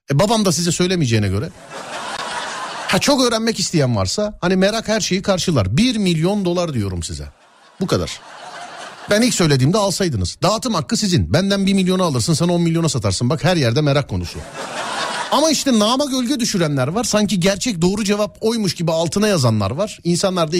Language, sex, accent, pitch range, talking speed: Turkish, male, native, 130-210 Hz, 170 wpm